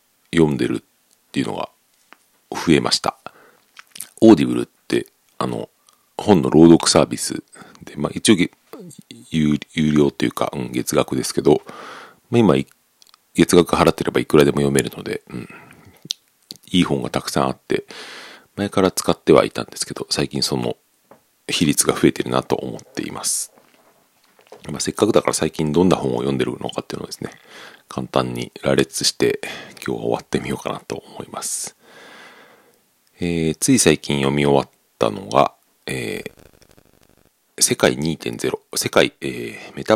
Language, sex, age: Japanese, male, 40-59